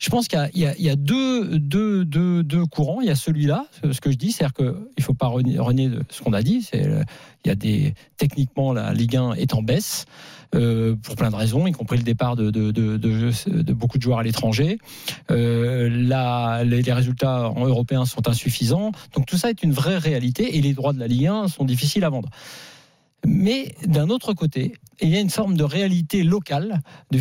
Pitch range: 135-185 Hz